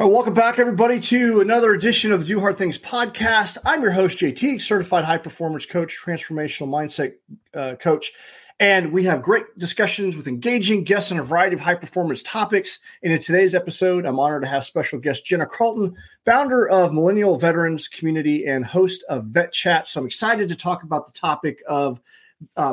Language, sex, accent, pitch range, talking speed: English, male, American, 155-215 Hz, 180 wpm